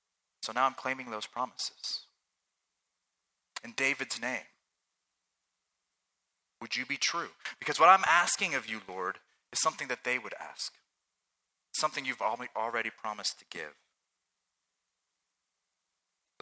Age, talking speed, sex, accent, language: 30-49, 120 wpm, male, American, English